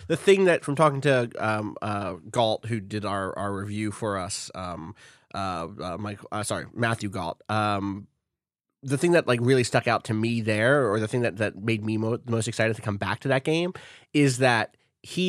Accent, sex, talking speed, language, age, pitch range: American, male, 210 wpm, English, 30-49, 105-135 Hz